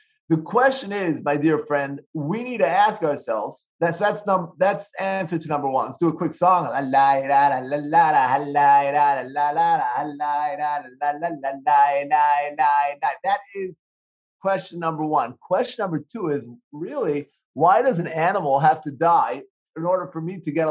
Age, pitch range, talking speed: 30-49, 145-190 Hz, 135 wpm